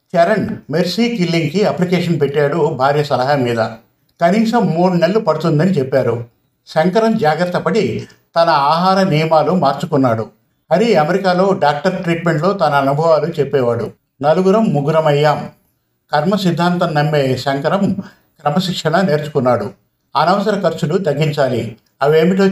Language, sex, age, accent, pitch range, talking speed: Telugu, male, 50-69, native, 140-185 Hz, 105 wpm